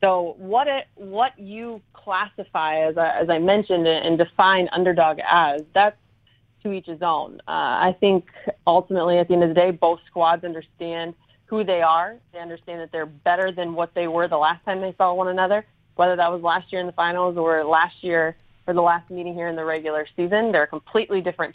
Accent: American